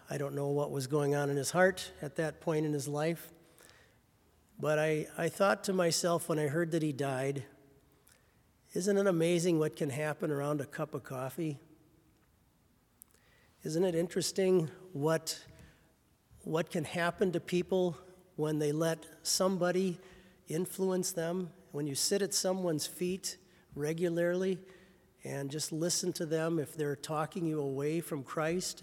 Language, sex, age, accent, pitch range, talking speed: English, male, 50-69, American, 145-180 Hz, 150 wpm